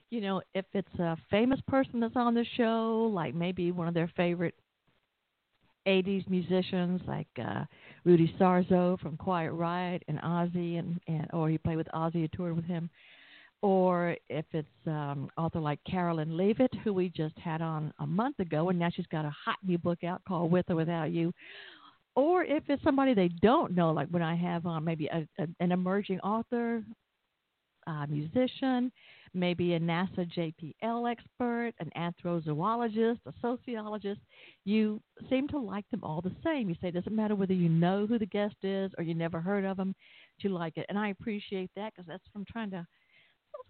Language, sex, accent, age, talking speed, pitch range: English, female, American, 50-69, 190 wpm, 165-215 Hz